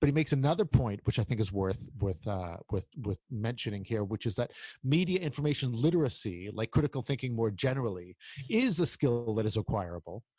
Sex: male